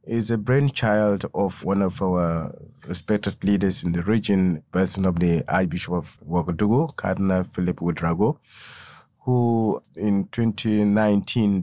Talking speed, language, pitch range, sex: 125 wpm, English, 90-110 Hz, male